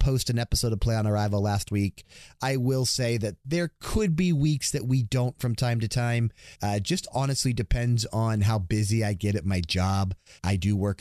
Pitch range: 85-110 Hz